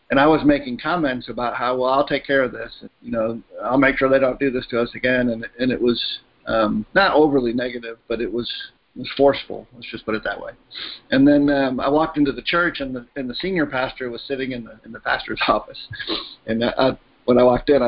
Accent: American